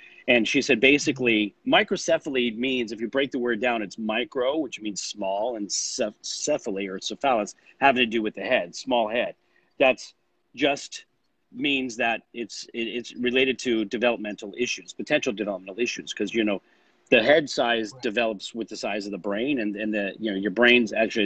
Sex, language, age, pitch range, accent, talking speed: male, English, 40-59, 105-130 Hz, American, 185 wpm